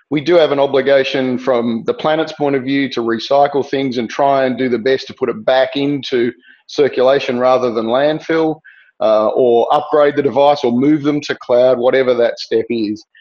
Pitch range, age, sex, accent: 130-160 Hz, 40-59, male, Australian